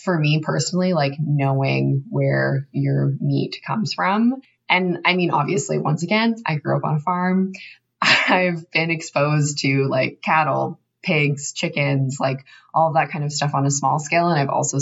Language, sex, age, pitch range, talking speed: English, female, 20-39, 135-170 Hz, 175 wpm